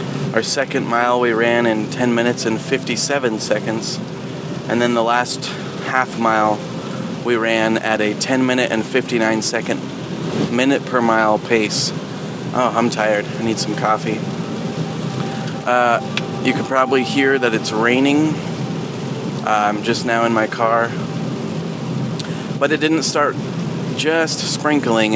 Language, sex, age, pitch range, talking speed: English, male, 30-49, 110-135 Hz, 140 wpm